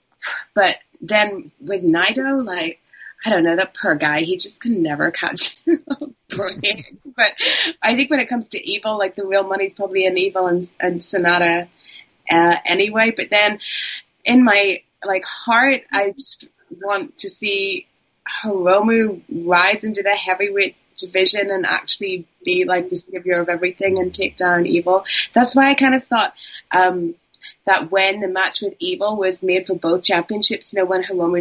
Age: 20-39